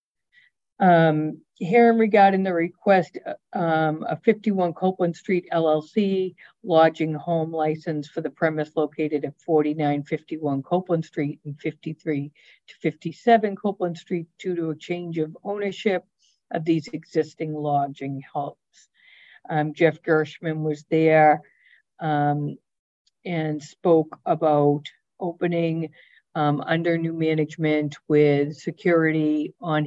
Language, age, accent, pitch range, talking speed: English, 50-69, American, 150-170 Hz, 125 wpm